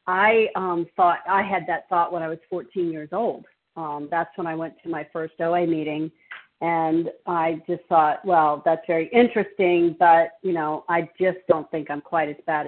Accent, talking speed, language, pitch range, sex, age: American, 200 wpm, English, 170-225 Hz, female, 50-69